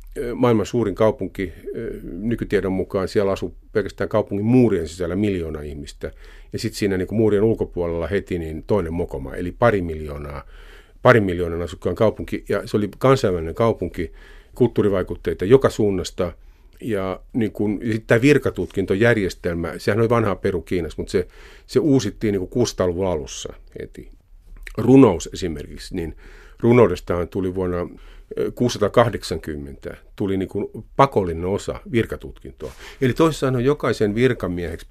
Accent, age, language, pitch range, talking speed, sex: native, 50-69, Finnish, 90-120 Hz, 120 wpm, male